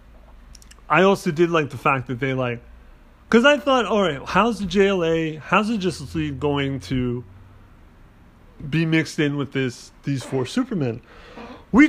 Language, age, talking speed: English, 30-49, 155 wpm